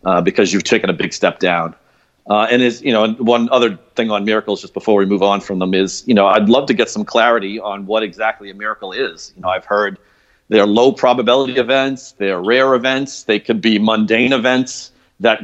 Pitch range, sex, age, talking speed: 105-125 Hz, male, 40-59, 220 wpm